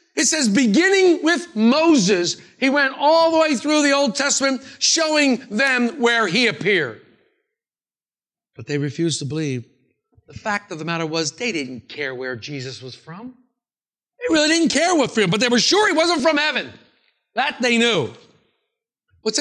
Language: English